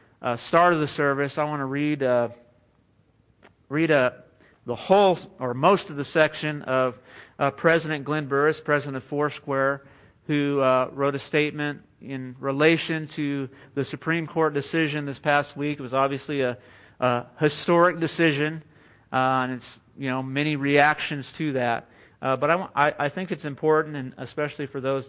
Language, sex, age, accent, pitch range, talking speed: English, male, 40-59, American, 130-150 Hz, 170 wpm